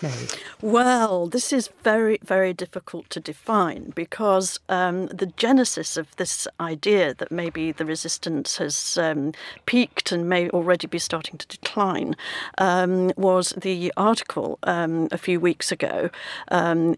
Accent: British